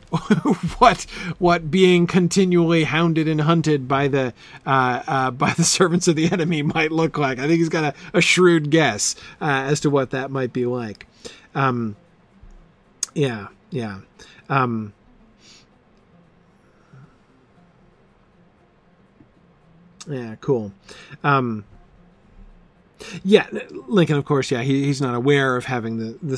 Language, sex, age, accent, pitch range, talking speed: English, male, 40-59, American, 115-160 Hz, 125 wpm